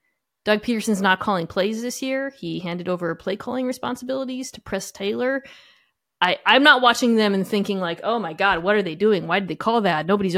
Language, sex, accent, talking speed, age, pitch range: English, female, American, 215 wpm, 20-39, 185-250 Hz